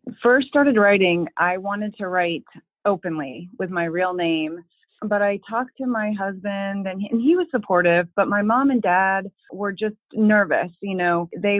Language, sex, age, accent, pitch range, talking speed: English, female, 30-49, American, 170-205 Hz, 175 wpm